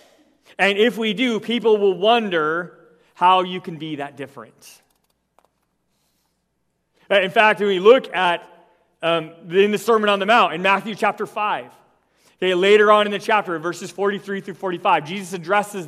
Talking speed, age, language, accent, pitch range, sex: 155 wpm, 30-49, English, American, 140-205 Hz, male